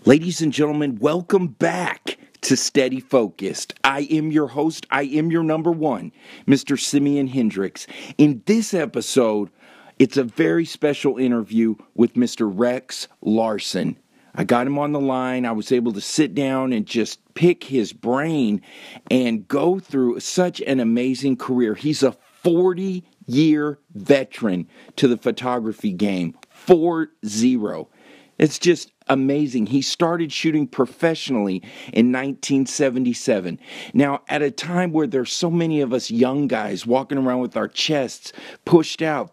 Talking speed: 140 wpm